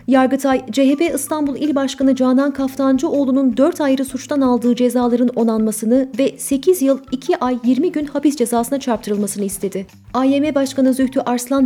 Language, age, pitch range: Turkish, 30-49, 235-275 Hz